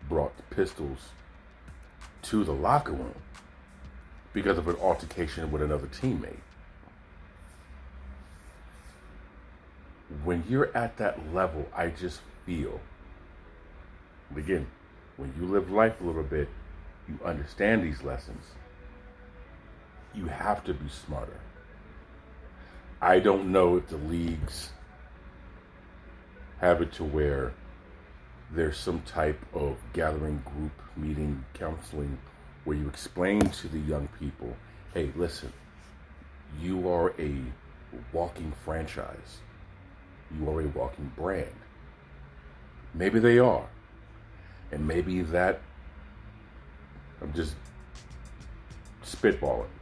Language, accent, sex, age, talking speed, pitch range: English, American, male, 40-59, 100 wpm, 70-90 Hz